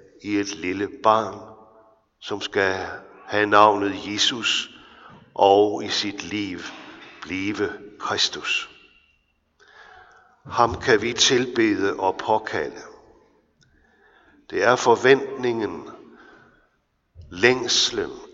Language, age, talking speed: Danish, 60-79, 80 wpm